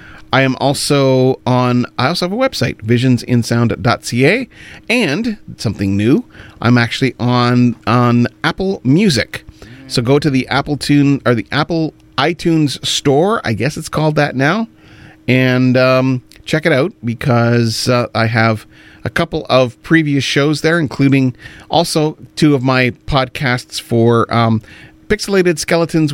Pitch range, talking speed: 115-145 Hz, 140 wpm